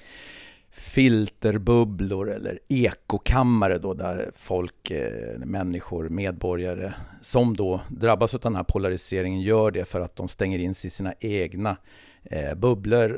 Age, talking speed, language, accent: 50-69, 125 wpm, English, Swedish